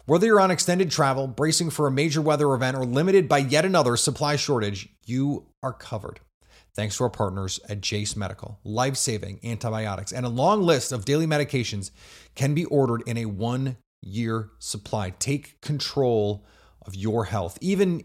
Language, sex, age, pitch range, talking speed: English, male, 30-49, 110-155 Hz, 165 wpm